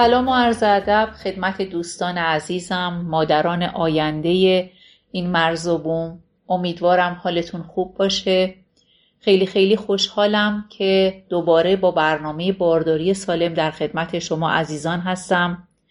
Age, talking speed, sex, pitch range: 40-59, 115 wpm, female, 165-190 Hz